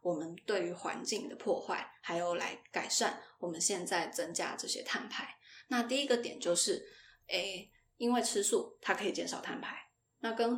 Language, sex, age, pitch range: Chinese, female, 20-39, 185-245 Hz